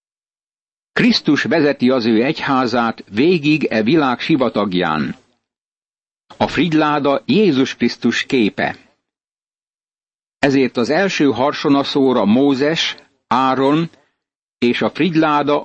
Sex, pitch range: male, 125-150 Hz